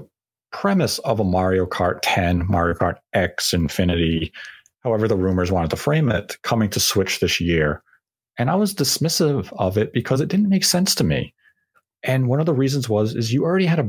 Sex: male